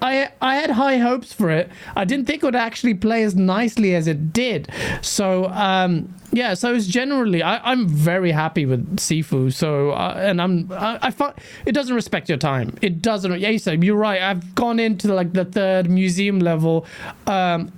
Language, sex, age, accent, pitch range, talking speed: English, male, 30-49, British, 175-220 Hz, 195 wpm